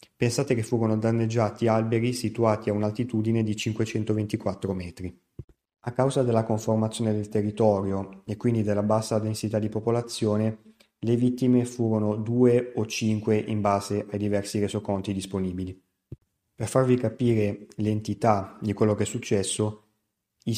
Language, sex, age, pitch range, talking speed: Italian, male, 30-49, 105-120 Hz, 135 wpm